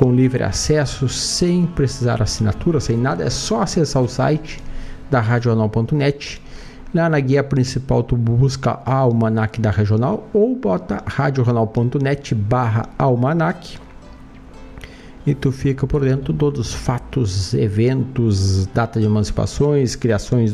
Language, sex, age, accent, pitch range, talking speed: Portuguese, male, 50-69, Brazilian, 115-145 Hz, 130 wpm